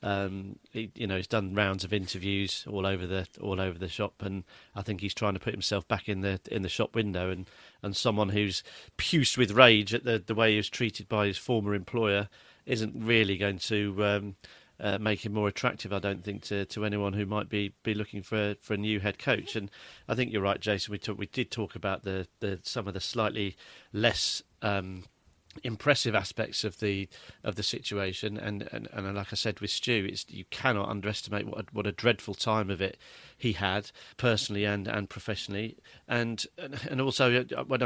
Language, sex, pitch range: English, male, 100-115 Hz